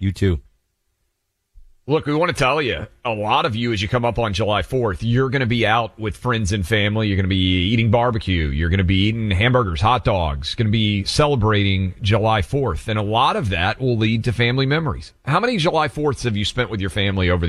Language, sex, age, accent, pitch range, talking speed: English, male, 40-59, American, 95-120 Hz, 235 wpm